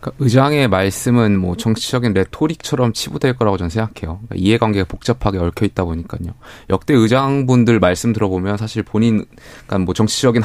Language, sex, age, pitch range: Korean, male, 20-39, 95-125 Hz